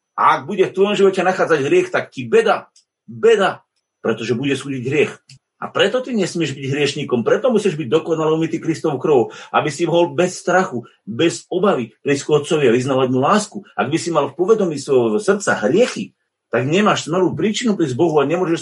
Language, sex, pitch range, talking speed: Slovak, male, 145-200 Hz, 185 wpm